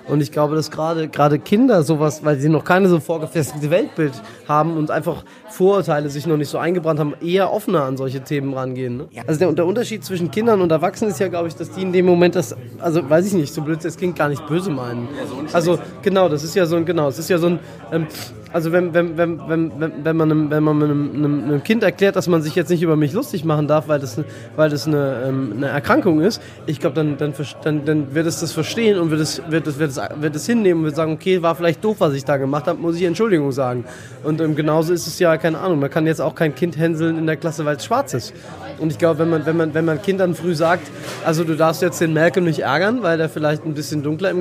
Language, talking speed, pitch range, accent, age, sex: German, 245 wpm, 150-175 Hz, German, 20-39, male